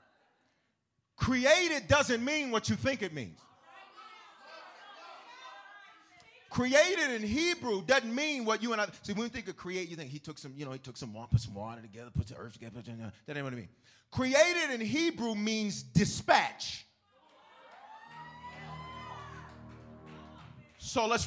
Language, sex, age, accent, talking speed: English, male, 40-59, American, 155 wpm